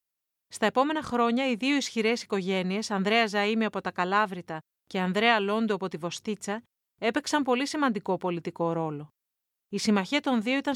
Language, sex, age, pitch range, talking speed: Greek, female, 30-49, 195-255 Hz, 155 wpm